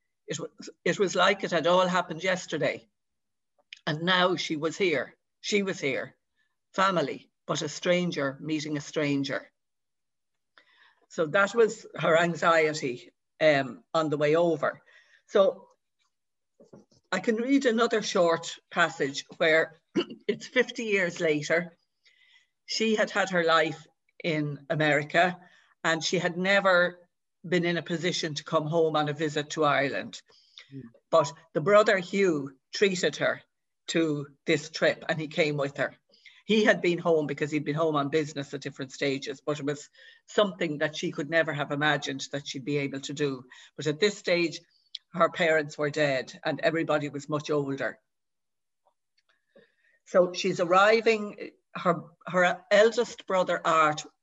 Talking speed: 145 wpm